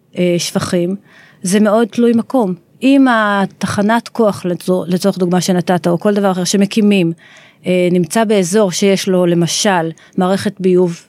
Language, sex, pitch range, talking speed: Hebrew, female, 180-220 Hz, 130 wpm